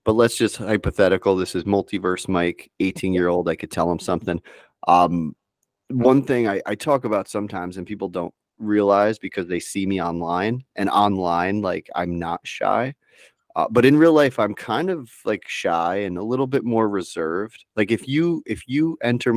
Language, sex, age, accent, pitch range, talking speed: English, male, 30-49, American, 90-110 Hz, 190 wpm